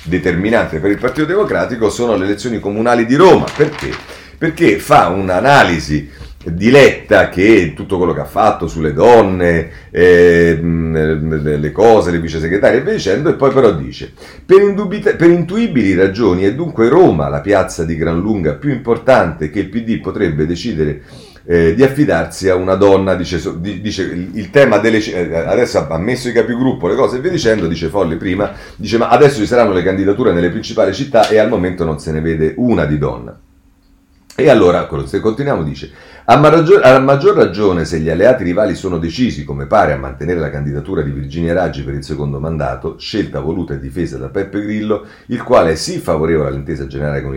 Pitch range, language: 80-110 Hz, Italian